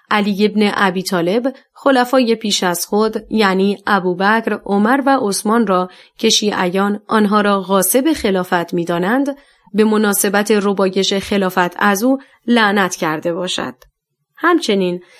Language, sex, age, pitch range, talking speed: Persian, female, 30-49, 190-250 Hz, 120 wpm